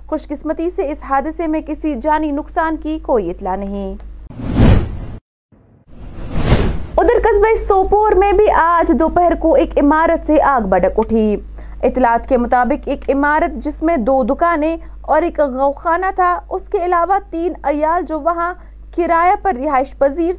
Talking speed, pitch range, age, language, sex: 150 wpm, 270-330 Hz, 30-49, Urdu, female